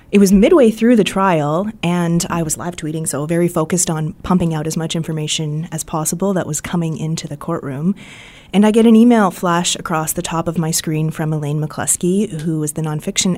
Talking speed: 210 wpm